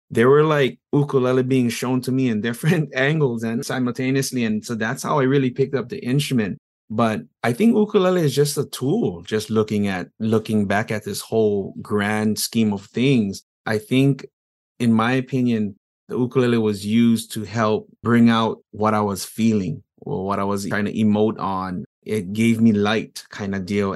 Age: 20-39